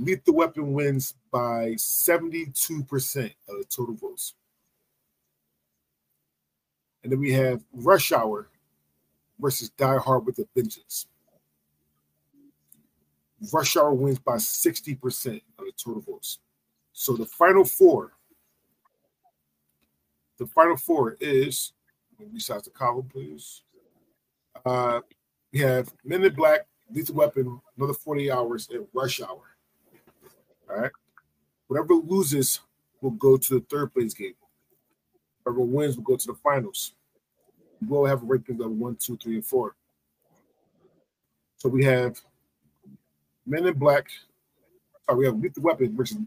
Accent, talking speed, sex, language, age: American, 130 wpm, male, English, 40-59